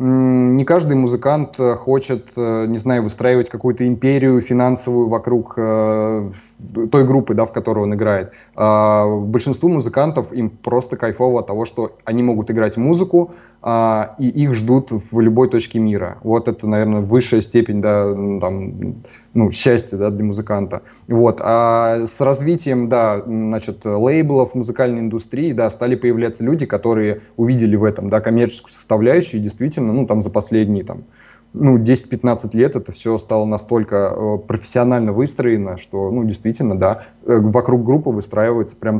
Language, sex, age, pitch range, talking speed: Russian, male, 20-39, 110-125 Hz, 130 wpm